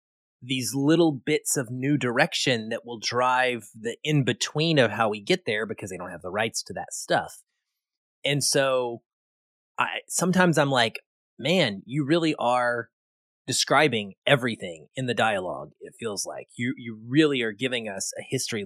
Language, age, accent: English, 30-49, American